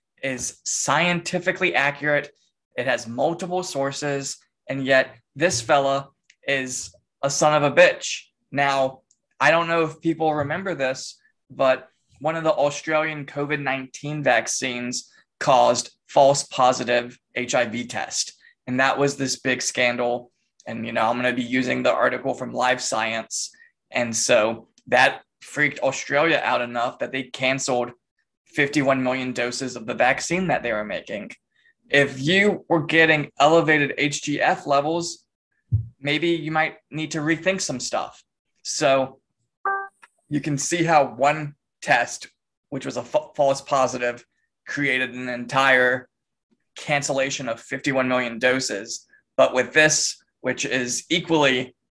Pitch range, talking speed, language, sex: 125-155 Hz, 135 wpm, English, male